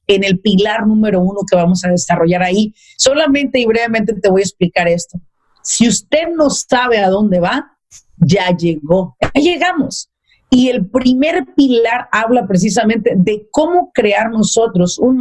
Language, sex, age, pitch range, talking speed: Spanish, female, 40-59, 195-255 Hz, 160 wpm